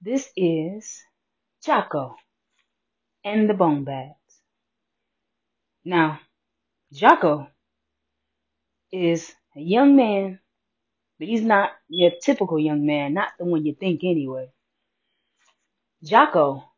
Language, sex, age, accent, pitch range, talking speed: English, female, 20-39, American, 180-275 Hz, 95 wpm